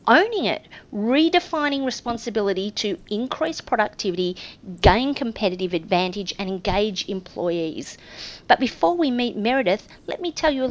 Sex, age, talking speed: female, 40-59, 130 wpm